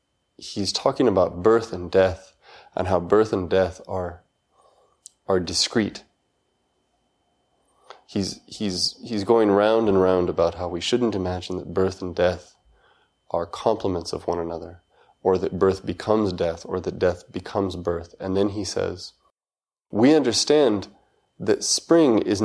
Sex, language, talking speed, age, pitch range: male, English, 145 wpm, 20-39, 90-105 Hz